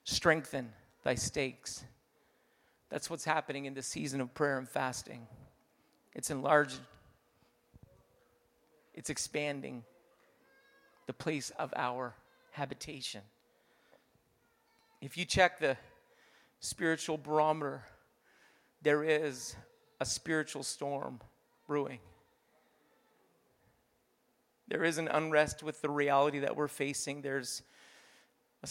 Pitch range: 130-155 Hz